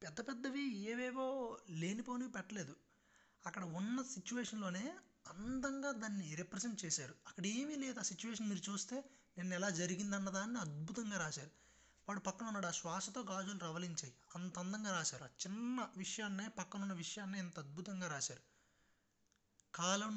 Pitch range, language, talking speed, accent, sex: 160-210 Hz, Telugu, 130 wpm, native, male